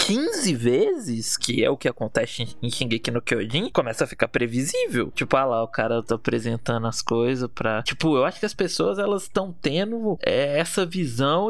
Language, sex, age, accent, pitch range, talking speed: Portuguese, male, 20-39, Brazilian, 130-200 Hz, 195 wpm